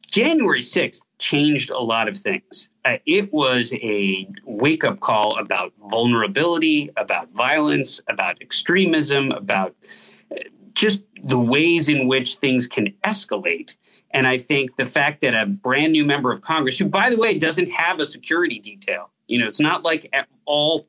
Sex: male